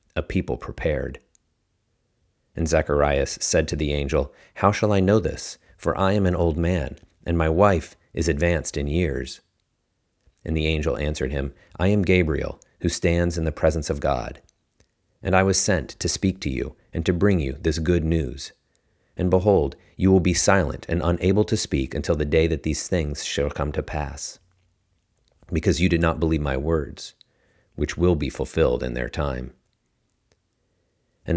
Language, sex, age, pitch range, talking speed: English, male, 40-59, 75-90 Hz, 175 wpm